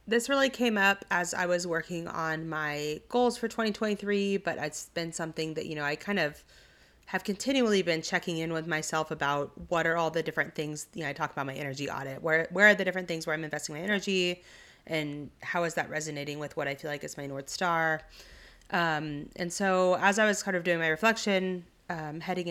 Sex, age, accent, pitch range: female, 30-49, American, 155-200 Hz